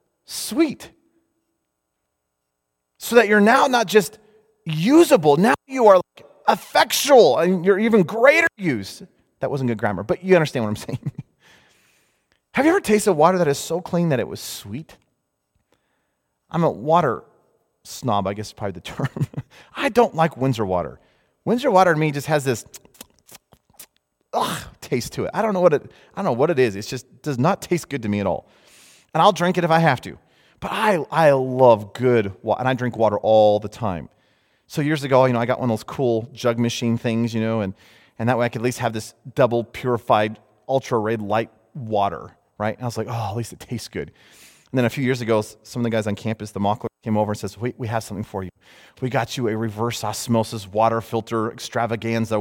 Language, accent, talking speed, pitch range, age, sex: English, American, 205 wpm, 110-155 Hz, 30-49, male